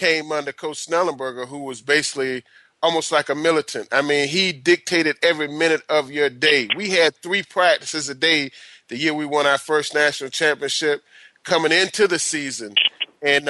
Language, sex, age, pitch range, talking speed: English, male, 30-49, 135-170 Hz, 175 wpm